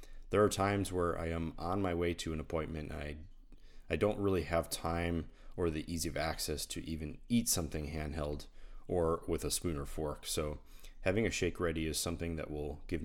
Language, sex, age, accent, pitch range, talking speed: English, male, 30-49, American, 80-95 Hz, 200 wpm